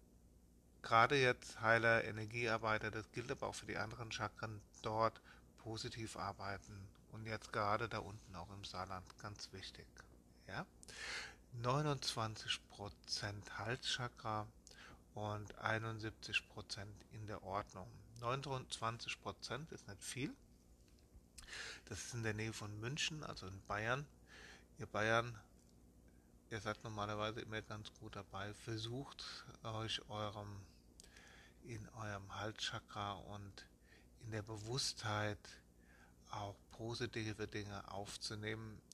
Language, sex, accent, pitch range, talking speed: German, male, German, 95-115 Hz, 105 wpm